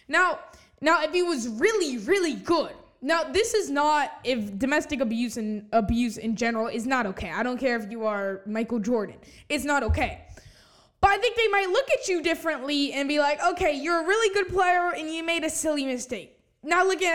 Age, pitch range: 10-29, 245-325 Hz